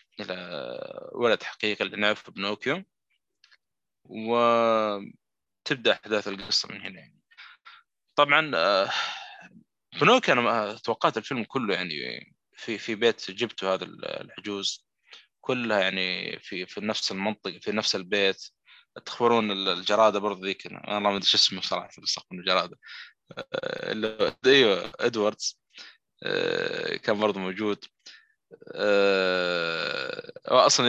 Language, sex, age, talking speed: Arabic, male, 20-39, 105 wpm